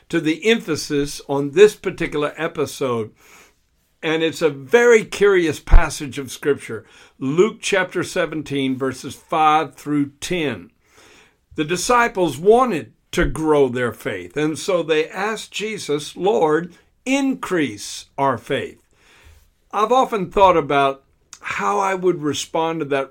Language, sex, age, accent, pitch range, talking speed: English, male, 60-79, American, 140-195 Hz, 125 wpm